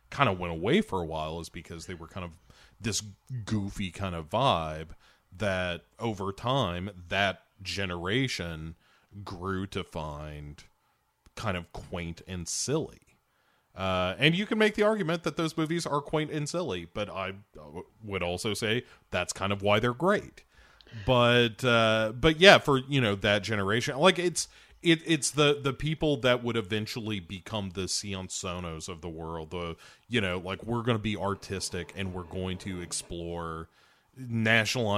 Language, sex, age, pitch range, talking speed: English, male, 30-49, 90-115 Hz, 165 wpm